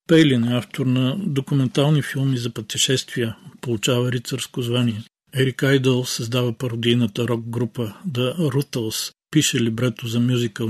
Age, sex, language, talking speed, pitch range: 40-59, male, Bulgarian, 125 wpm, 115-135 Hz